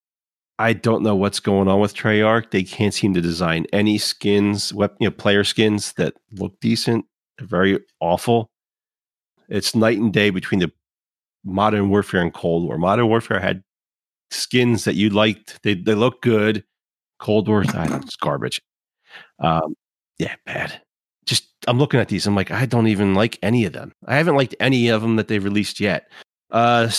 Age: 40-59